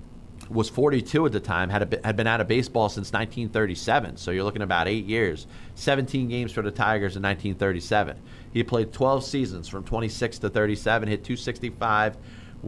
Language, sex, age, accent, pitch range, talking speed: English, male, 30-49, American, 100-120 Hz, 180 wpm